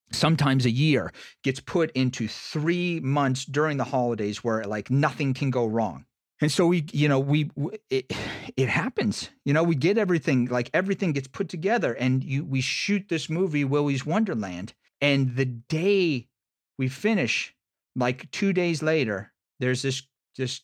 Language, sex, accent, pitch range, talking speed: English, male, American, 125-160 Hz, 165 wpm